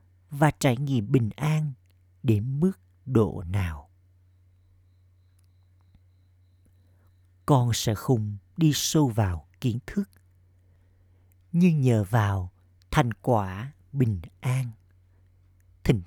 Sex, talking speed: male, 95 wpm